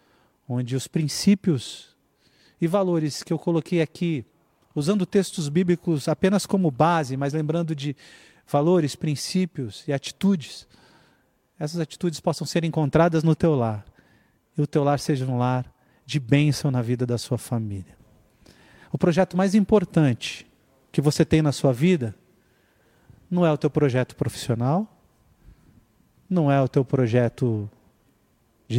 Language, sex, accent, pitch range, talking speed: Portuguese, male, Brazilian, 125-160 Hz, 140 wpm